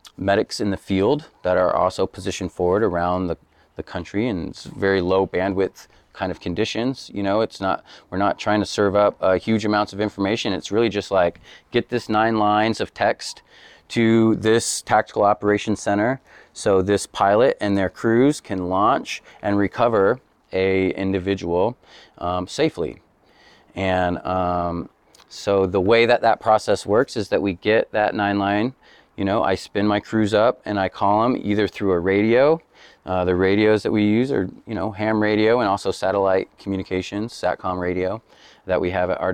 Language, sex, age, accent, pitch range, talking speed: English, male, 30-49, American, 95-110 Hz, 180 wpm